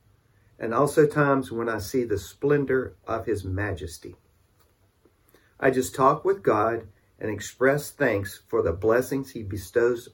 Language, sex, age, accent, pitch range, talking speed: English, male, 50-69, American, 95-130 Hz, 140 wpm